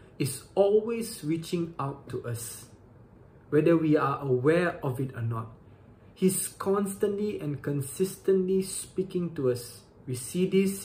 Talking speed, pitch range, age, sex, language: 135 wpm, 125-170 Hz, 20-39, male, English